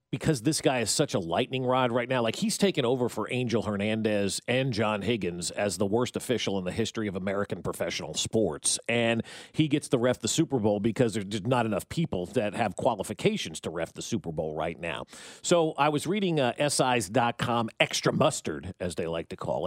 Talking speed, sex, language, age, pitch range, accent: 205 wpm, male, English, 40-59, 115-155 Hz, American